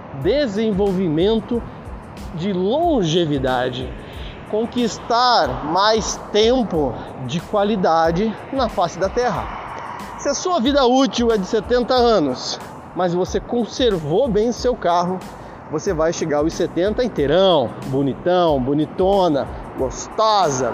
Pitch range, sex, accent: 175-230 Hz, male, Brazilian